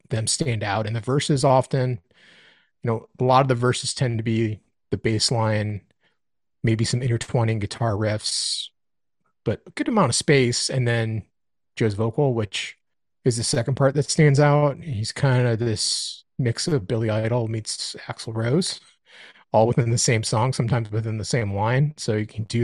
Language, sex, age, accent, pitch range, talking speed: English, male, 30-49, American, 110-135 Hz, 180 wpm